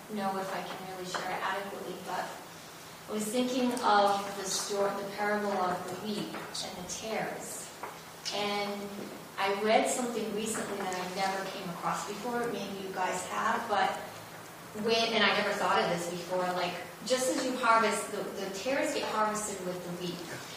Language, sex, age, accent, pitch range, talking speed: English, female, 30-49, American, 195-250 Hz, 175 wpm